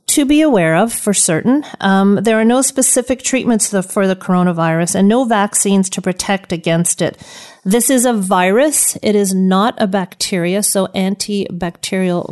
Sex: female